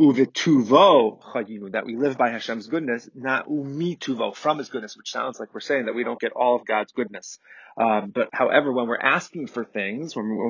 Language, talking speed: English, 190 wpm